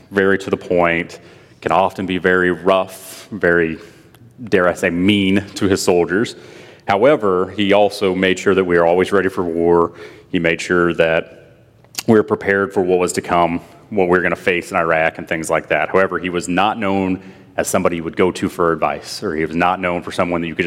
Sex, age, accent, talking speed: male, 30-49, American, 220 wpm